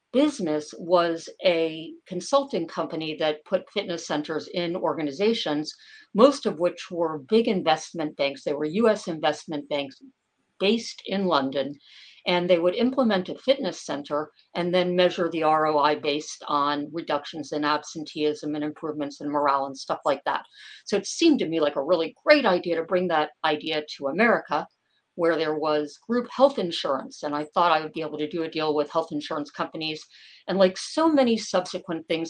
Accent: American